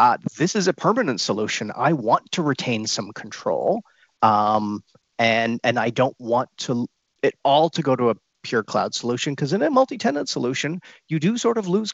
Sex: male